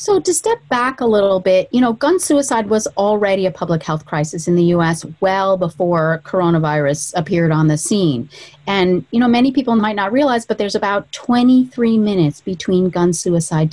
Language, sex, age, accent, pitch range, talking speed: English, female, 40-59, American, 180-225 Hz, 190 wpm